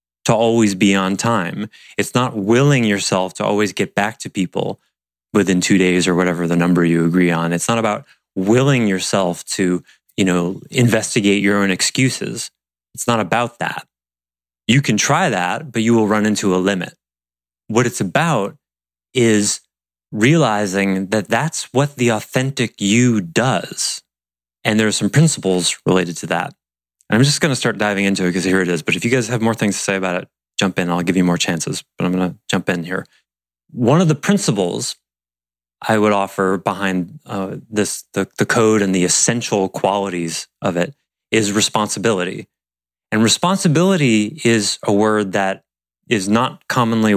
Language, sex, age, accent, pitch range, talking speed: English, male, 30-49, American, 90-115 Hz, 175 wpm